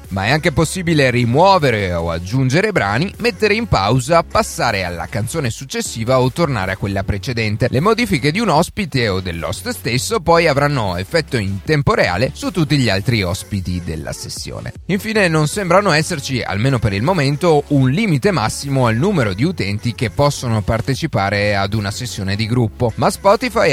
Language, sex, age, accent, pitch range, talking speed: Italian, male, 30-49, native, 110-165 Hz, 165 wpm